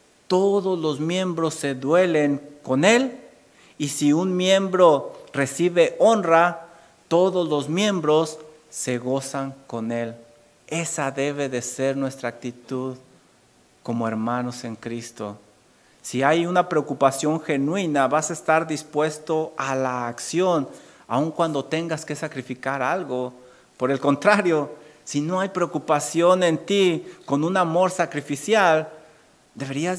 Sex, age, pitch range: male, 50-69, 130-160 Hz